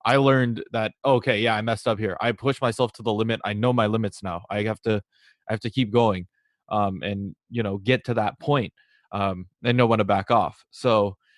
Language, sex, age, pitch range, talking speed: English, male, 20-39, 105-125 Hz, 230 wpm